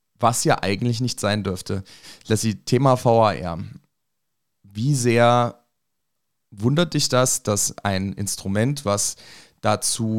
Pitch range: 100-120 Hz